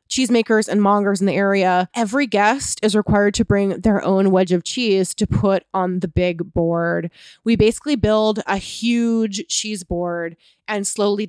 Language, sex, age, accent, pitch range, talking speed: English, female, 20-39, American, 190-230 Hz, 170 wpm